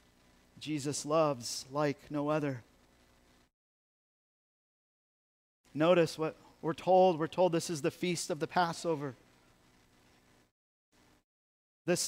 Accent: American